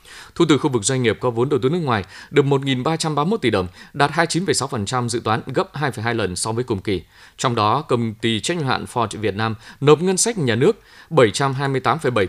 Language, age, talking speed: Vietnamese, 20-39, 205 wpm